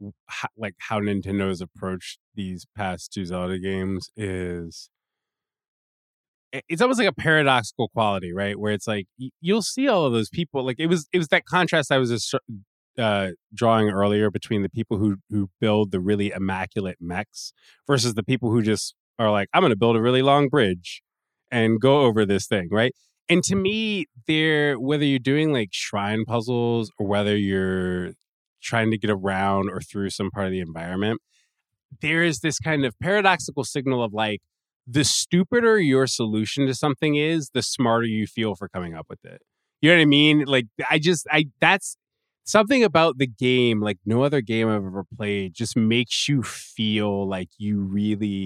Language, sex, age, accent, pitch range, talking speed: English, male, 20-39, American, 100-140 Hz, 180 wpm